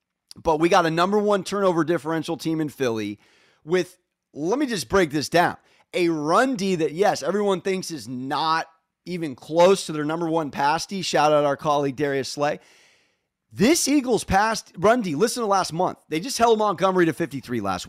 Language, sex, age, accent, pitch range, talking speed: English, male, 30-49, American, 150-200 Hz, 190 wpm